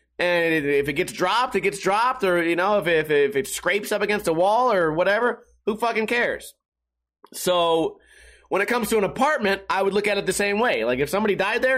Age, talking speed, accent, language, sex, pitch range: 30-49, 230 wpm, American, English, male, 175-240 Hz